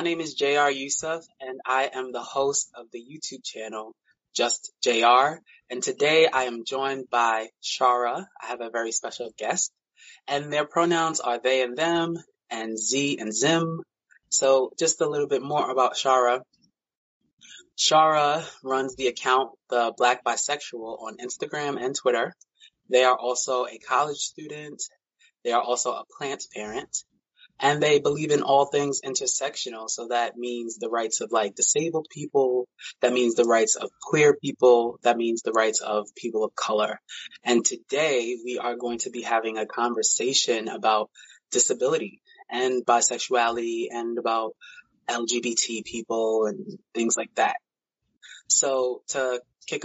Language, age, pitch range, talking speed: English, 20-39, 120-150 Hz, 155 wpm